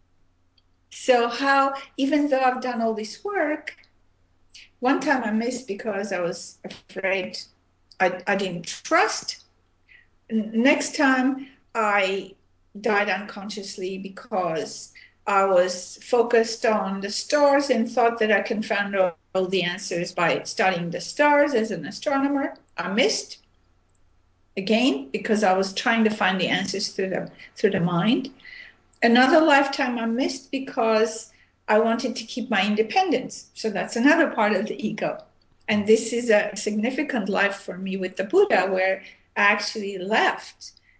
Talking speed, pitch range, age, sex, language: 145 wpm, 190-245 Hz, 50-69, female, English